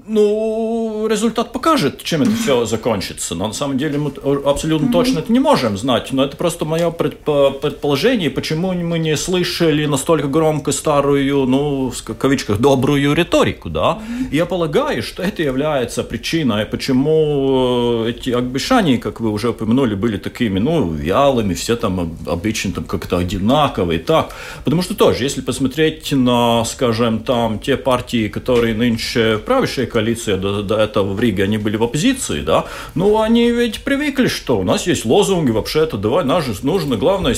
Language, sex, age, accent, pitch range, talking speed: Russian, male, 40-59, native, 115-175 Hz, 160 wpm